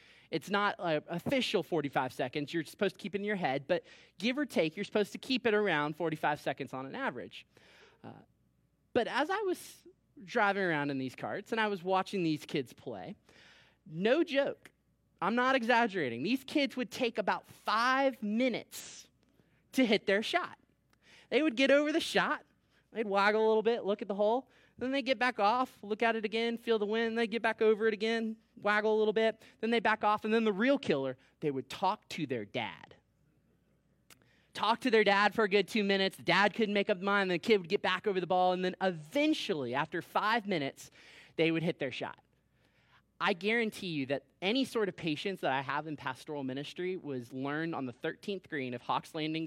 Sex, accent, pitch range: male, American, 150-225 Hz